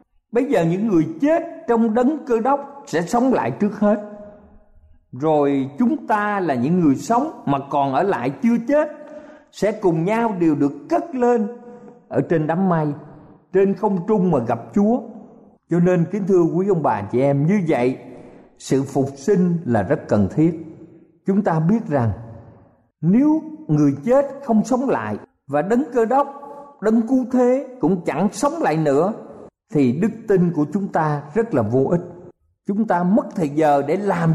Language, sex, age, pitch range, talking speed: Vietnamese, male, 50-69, 145-235 Hz, 175 wpm